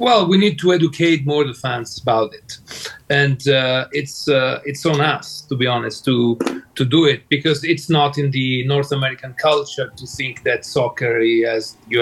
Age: 40-59